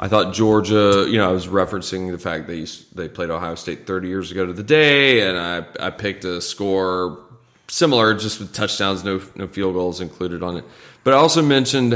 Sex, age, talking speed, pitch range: male, 30-49, 215 wpm, 90-110 Hz